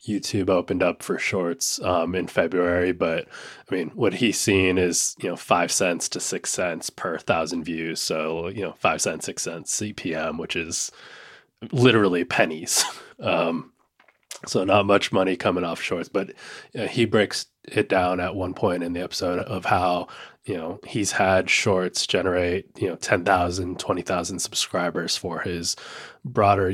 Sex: male